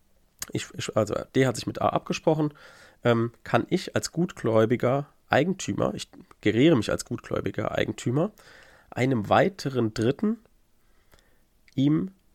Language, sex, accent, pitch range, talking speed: German, male, German, 110-155 Hz, 110 wpm